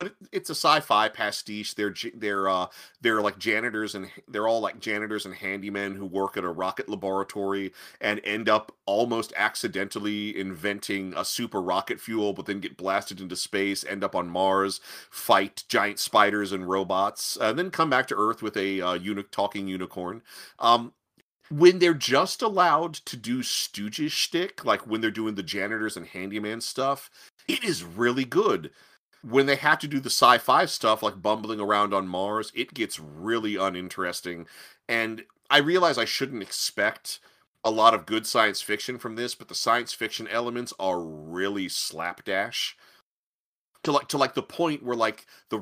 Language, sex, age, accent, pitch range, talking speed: English, male, 30-49, American, 100-120 Hz, 170 wpm